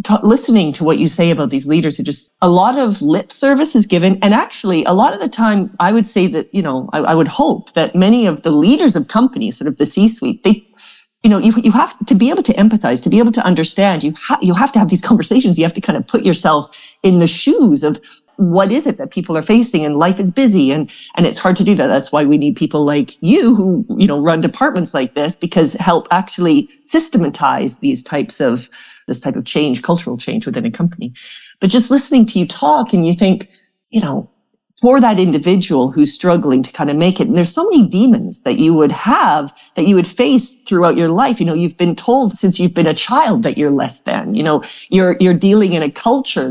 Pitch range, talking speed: 165-235 Hz, 240 wpm